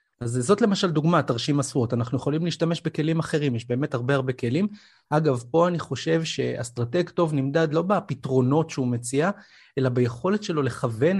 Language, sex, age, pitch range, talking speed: Hebrew, male, 30-49, 125-155 Hz, 165 wpm